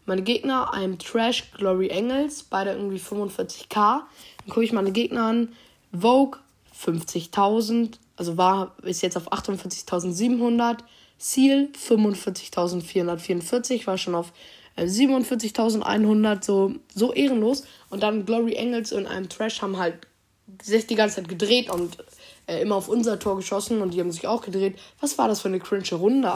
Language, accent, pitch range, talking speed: German, German, 180-225 Hz, 150 wpm